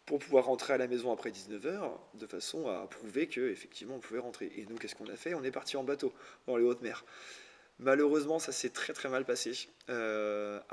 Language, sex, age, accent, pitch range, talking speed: French, male, 20-39, French, 110-130 Hz, 220 wpm